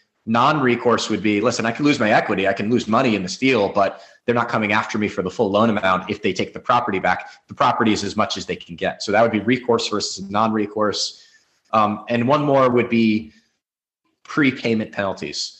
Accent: American